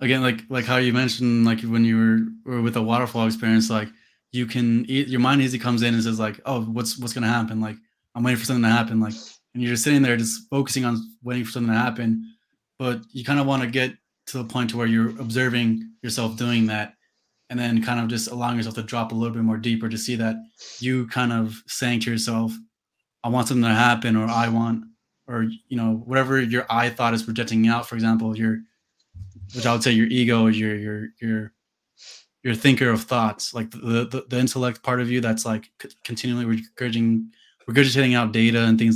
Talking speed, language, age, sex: 225 wpm, English, 20-39, male